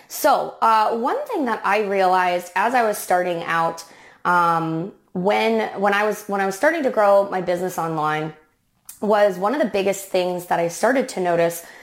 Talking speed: 190 wpm